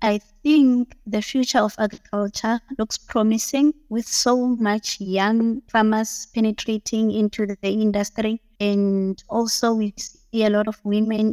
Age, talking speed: 20-39, 130 wpm